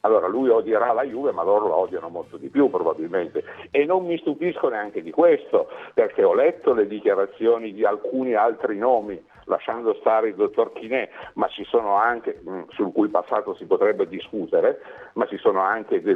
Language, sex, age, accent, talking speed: Italian, male, 50-69, native, 180 wpm